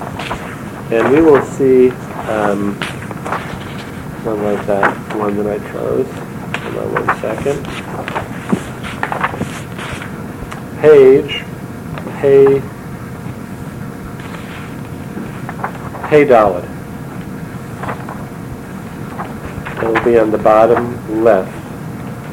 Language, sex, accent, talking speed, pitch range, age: English, male, American, 75 wpm, 115-135 Hz, 50-69